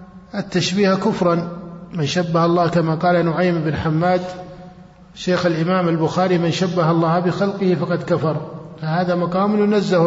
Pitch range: 165-190 Hz